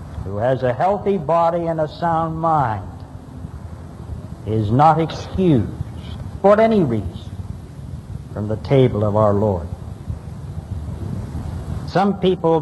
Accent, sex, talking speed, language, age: American, male, 110 wpm, English, 60-79